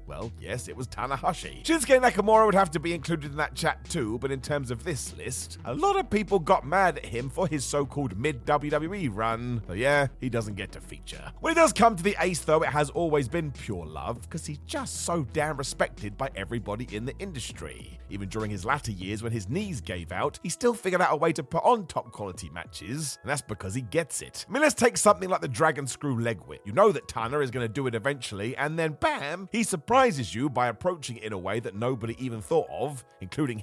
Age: 30-49